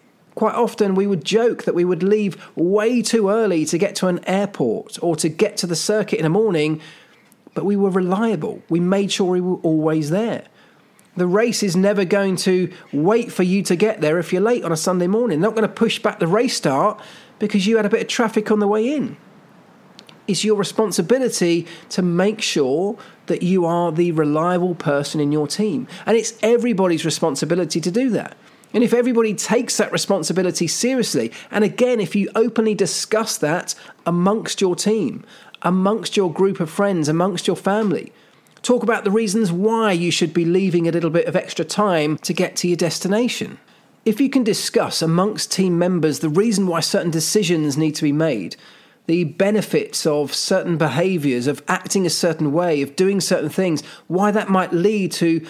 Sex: male